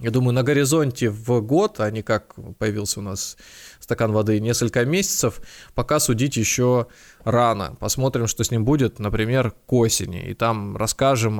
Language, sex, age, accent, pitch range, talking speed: Russian, male, 20-39, native, 110-140 Hz, 165 wpm